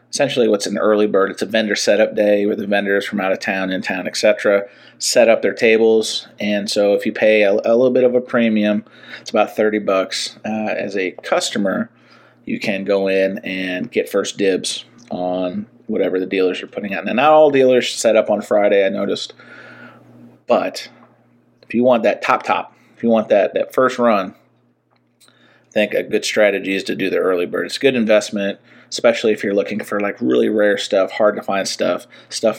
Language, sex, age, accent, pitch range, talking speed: English, male, 30-49, American, 95-110 Hz, 205 wpm